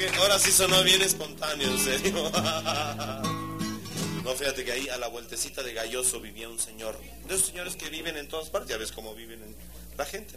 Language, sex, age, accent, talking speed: Spanish, male, 40-59, Mexican, 195 wpm